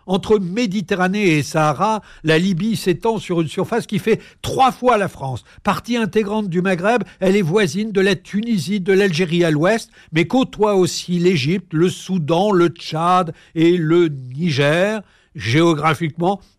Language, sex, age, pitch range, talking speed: French, male, 60-79, 145-195 Hz, 150 wpm